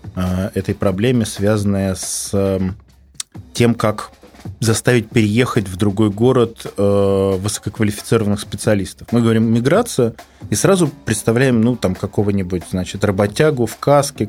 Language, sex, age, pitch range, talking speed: Russian, male, 20-39, 95-115 Hz, 110 wpm